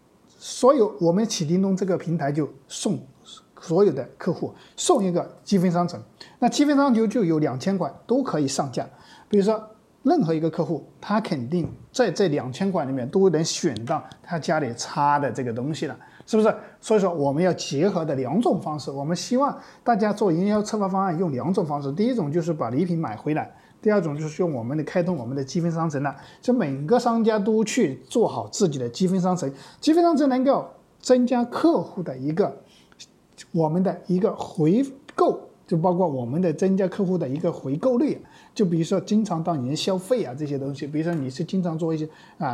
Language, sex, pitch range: Chinese, male, 155-215 Hz